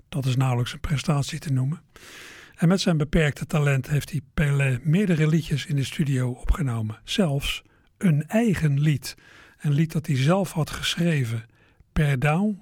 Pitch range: 135-170 Hz